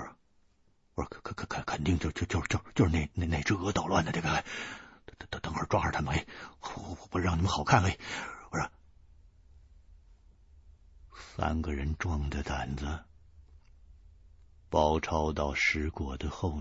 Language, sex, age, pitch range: Chinese, male, 60-79, 75-125 Hz